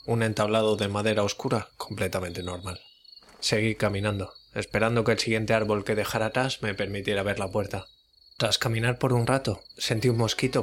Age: 20-39